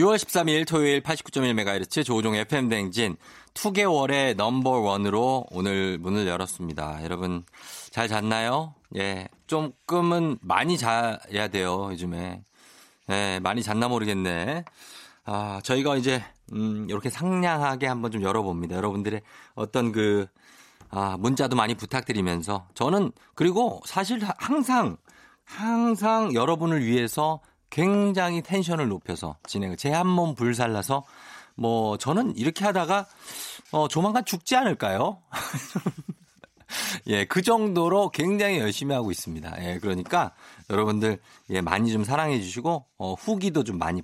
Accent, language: native, Korean